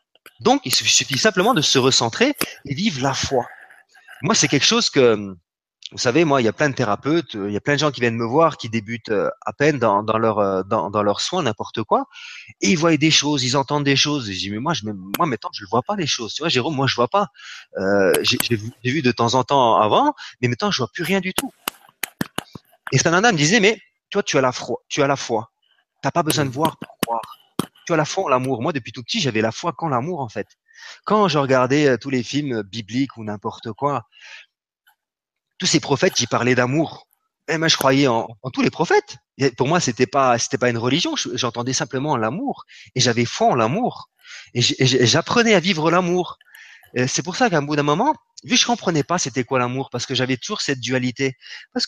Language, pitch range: French, 120-170 Hz